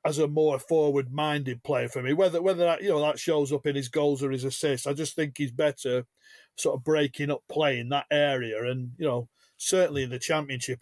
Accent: British